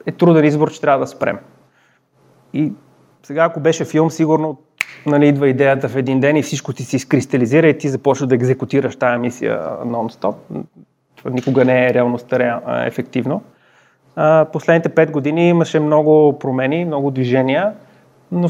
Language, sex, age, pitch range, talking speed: Bulgarian, male, 30-49, 130-160 Hz, 155 wpm